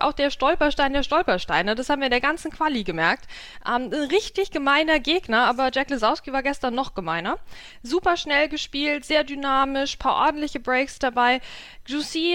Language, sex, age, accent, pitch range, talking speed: German, female, 20-39, German, 250-310 Hz, 165 wpm